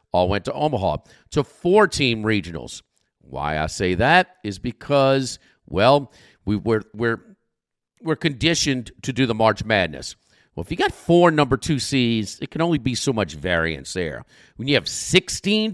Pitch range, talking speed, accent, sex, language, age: 100-145 Hz, 170 wpm, American, male, English, 50-69